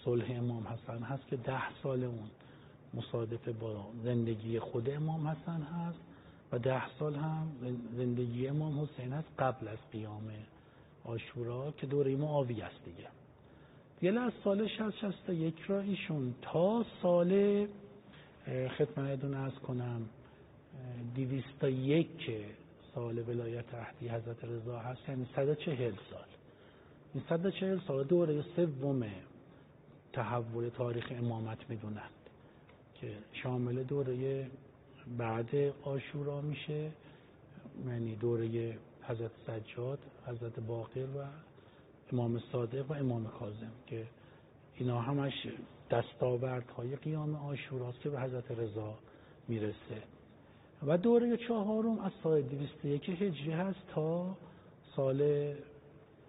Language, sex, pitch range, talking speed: Persian, male, 120-150 Hz, 120 wpm